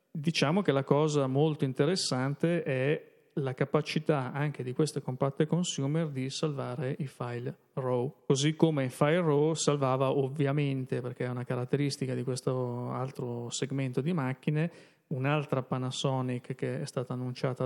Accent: native